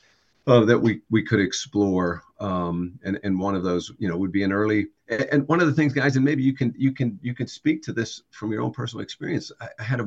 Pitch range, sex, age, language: 100-135 Hz, male, 50-69, English